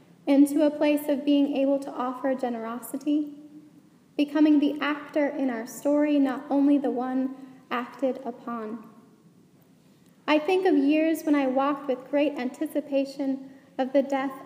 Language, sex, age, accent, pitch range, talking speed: English, female, 10-29, American, 255-295 Hz, 140 wpm